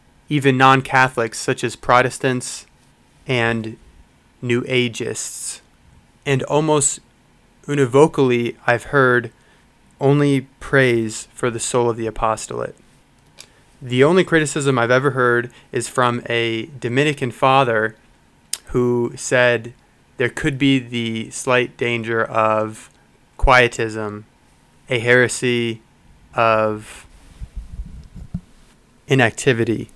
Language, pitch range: English, 115-130 Hz